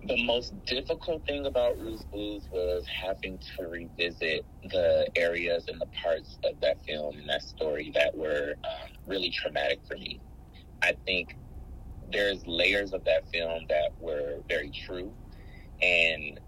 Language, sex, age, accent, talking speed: English, male, 30-49, American, 150 wpm